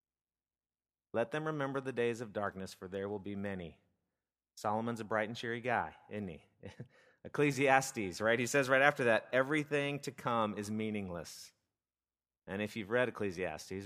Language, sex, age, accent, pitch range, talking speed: English, male, 30-49, American, 100-130 Hz, 160 wpm